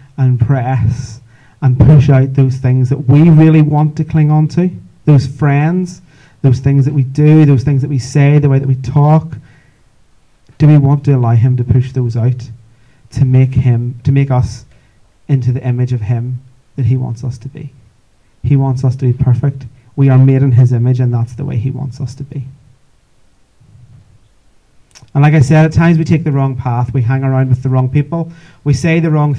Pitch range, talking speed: 125-145 Hz, 210 wpm